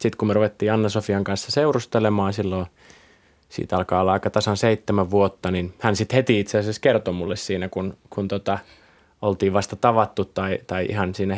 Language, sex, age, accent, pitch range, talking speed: Finnish, male, 20-39, native, 95-115 Hz, 180 wpm